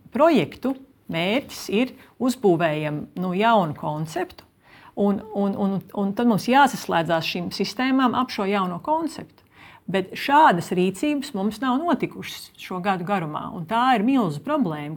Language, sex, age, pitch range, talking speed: English, female, 50-69, 175-245 Hz, 130 wpm